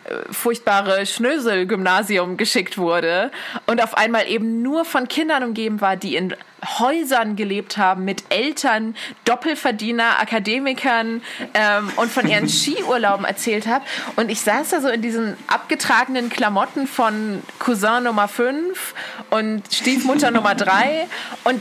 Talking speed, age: 130 wpm, 20-39